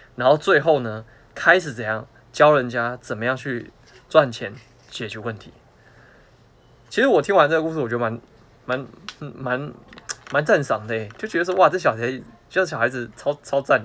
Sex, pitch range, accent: male, 115-150 Hz, native